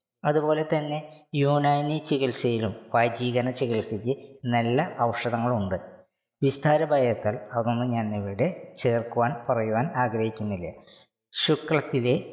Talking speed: 80 wpm